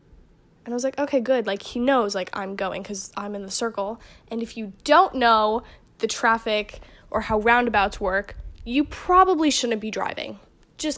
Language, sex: English, female